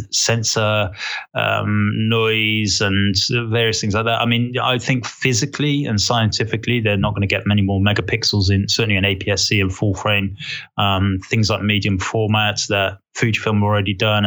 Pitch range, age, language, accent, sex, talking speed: 100-115 Hz, 20-39, English, British, male, 165 wpm